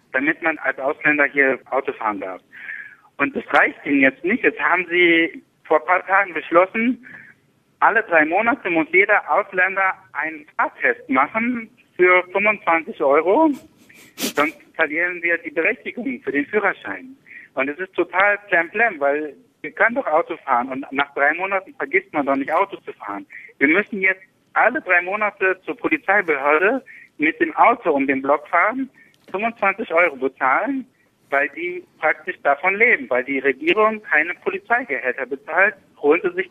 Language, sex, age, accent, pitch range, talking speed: German, male, 60-79, German, 150-245 Hz, 160 wpm